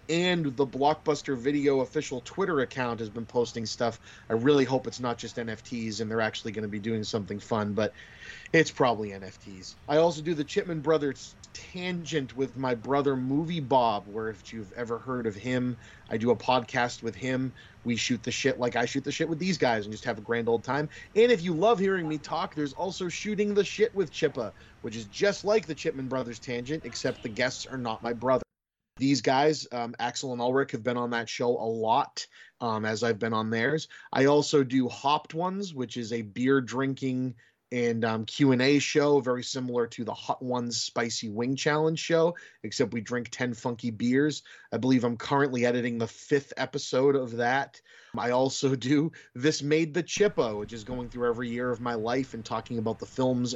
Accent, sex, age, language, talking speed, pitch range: American, male, 30-49, English, 205 wpm, 115-145 Hz